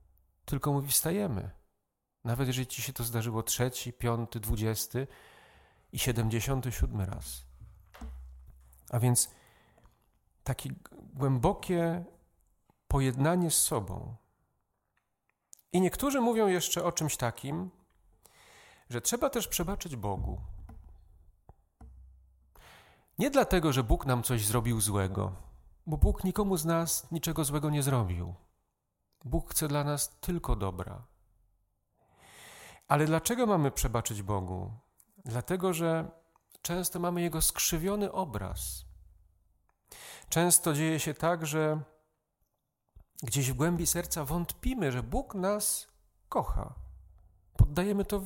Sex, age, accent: male, 40-59, native